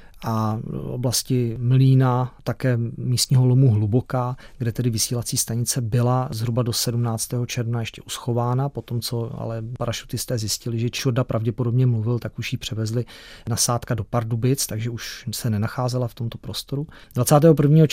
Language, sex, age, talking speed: Czech, male, 40-59, 145 wpm